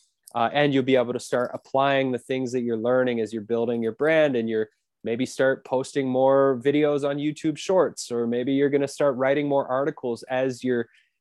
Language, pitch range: English, 120-150 Hz